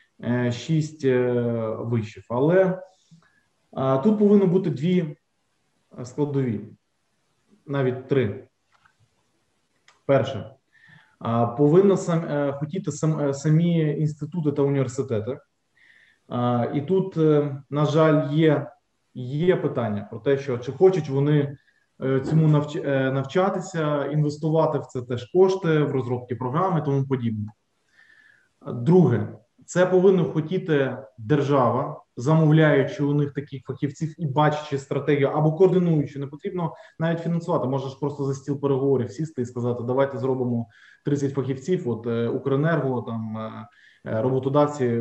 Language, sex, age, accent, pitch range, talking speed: Ukrainian, male, 20-39, native, 125-155 Hz, 110 wpm